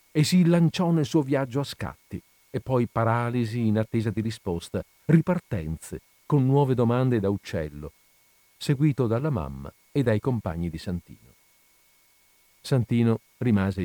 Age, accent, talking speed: 50-69, native, 135 wpm